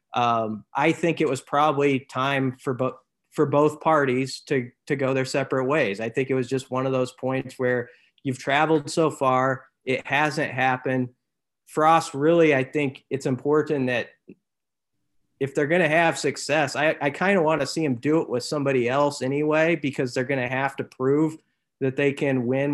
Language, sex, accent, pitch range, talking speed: English, male, American, 125-145 Hz, 185 wpm